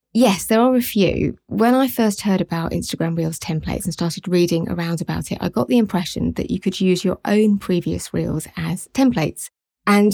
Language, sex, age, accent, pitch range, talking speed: English, female, 30-49, British, 170-200 Hz, 200 wpm